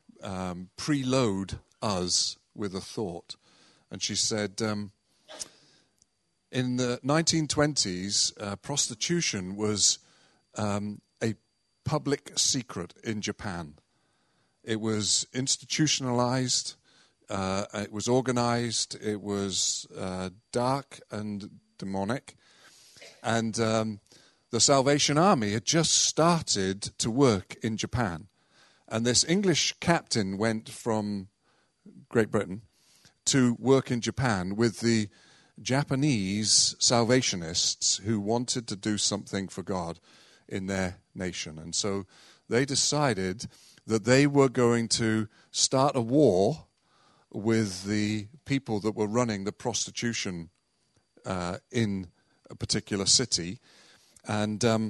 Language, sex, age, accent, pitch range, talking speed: English, male, 50-69, British, 100-125 Hz, 110 wpm